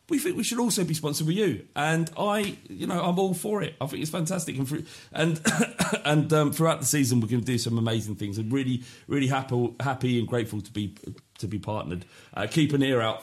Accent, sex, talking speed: British, male, 240 wpm